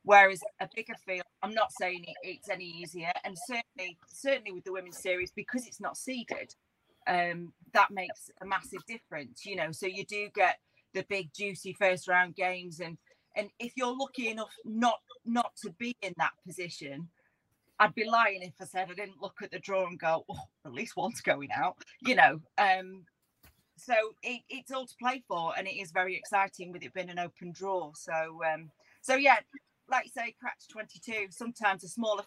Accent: British